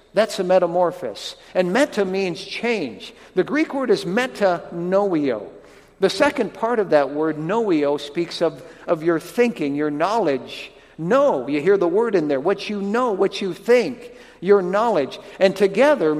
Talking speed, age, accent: 165 wpm, 60-79, American